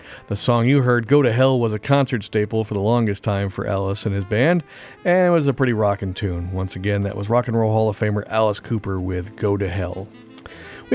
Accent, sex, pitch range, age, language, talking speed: American, male, 105-130 Hz, 40-59, English, 240 wpm